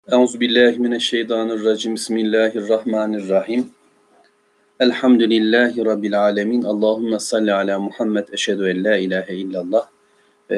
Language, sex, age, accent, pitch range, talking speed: Turkish, male, 40-59, native, 100-115 Hz, 85 wpm